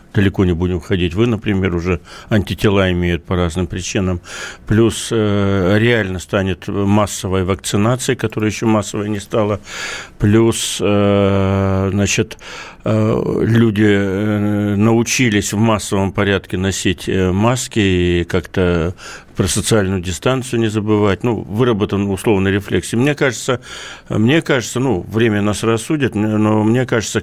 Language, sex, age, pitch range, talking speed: Russian, male, 60-79, 100-115 Hz, 120 wpm